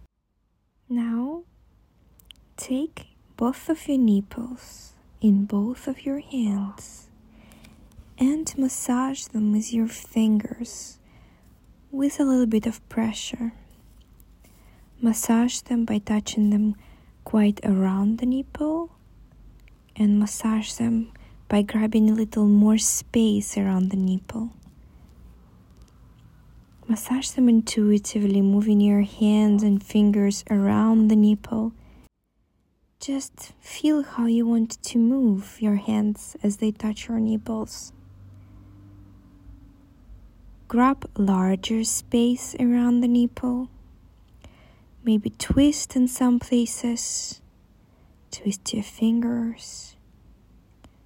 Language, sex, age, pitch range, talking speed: English, female, 20-39, 200-240 Hz, 100 wpm